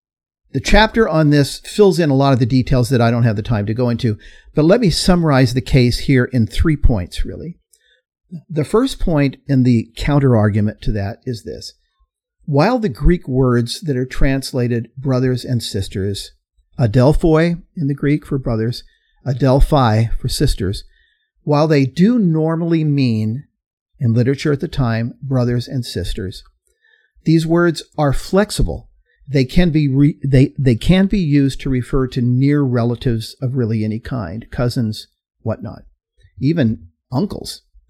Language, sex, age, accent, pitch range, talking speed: English, male, 50-69, American, 120-155 Hz, 155 wpm